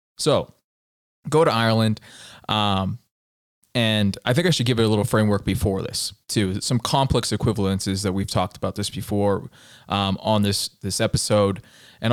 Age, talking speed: 20-39, 165 wpm